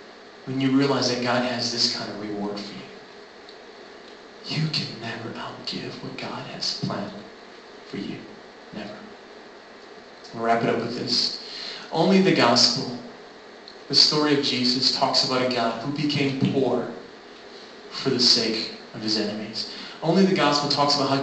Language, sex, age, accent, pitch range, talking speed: English, male, 40-59, American, 125-165 Hz, 155 wpm